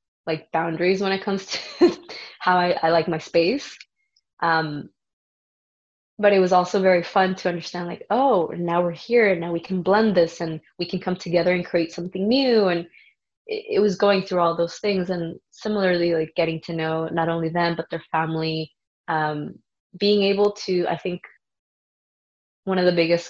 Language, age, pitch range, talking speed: English, 20-39, 165-185 Hz, 185 wpm